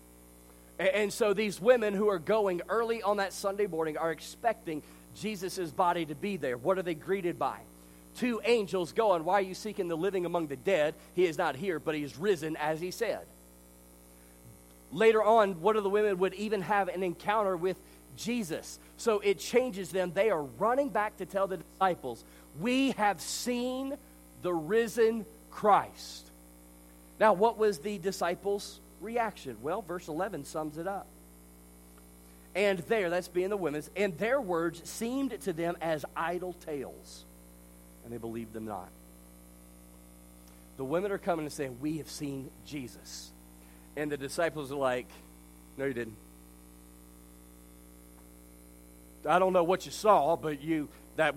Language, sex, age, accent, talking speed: English, male, 40-59, American, 160 wpm